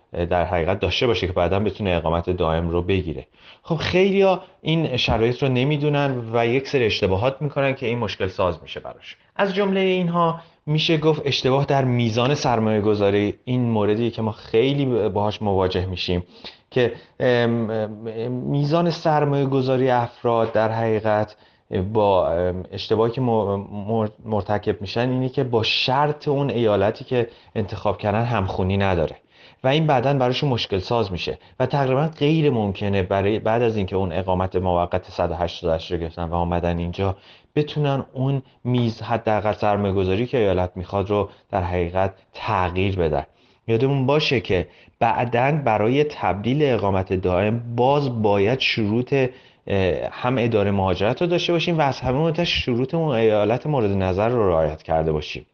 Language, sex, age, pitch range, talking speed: Persian, male, 30-49, 95-135 Hz, 145 wpm